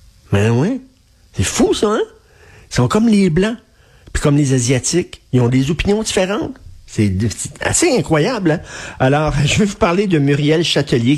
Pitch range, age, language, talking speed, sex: 115-150 Hz, 50-69, French, 175 wpm, male